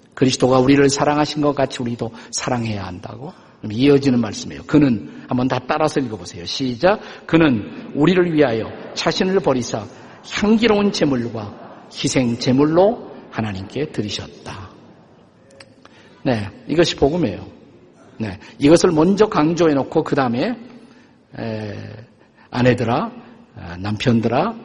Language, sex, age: Korean, male, 50-69